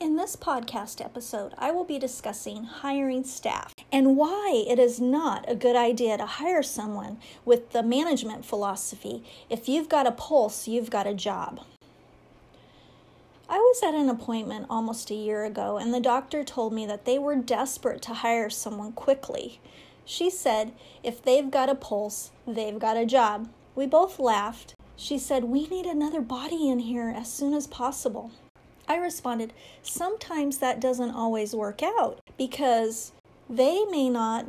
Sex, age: female, 40-59